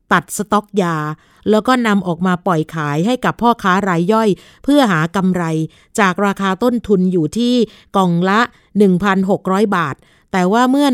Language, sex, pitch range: Thai, female, 175-210 Hz